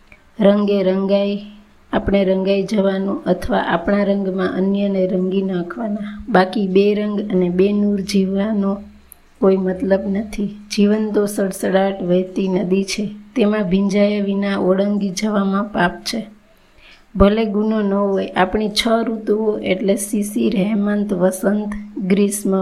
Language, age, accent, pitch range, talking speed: Gujarati, 20-39, native, 190-210 Hz, 120 wpm